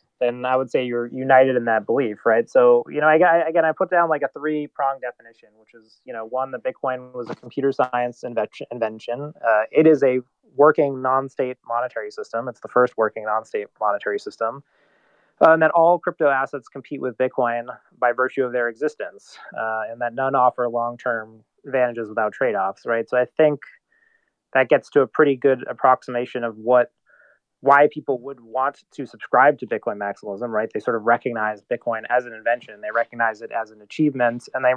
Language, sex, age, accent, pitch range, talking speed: English, male, 20-39, American, 120-140 Hz, 190 wpm